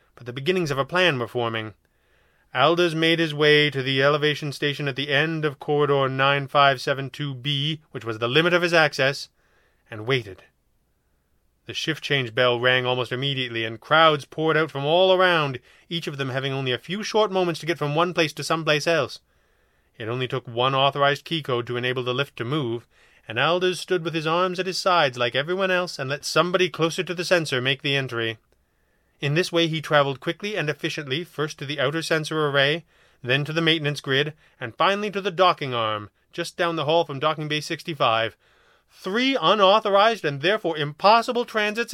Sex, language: male, English